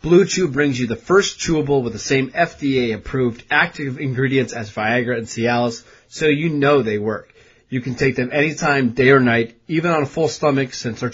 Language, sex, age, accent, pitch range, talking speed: English, male, 30-49, American, 125-150 Hz, 200 wpm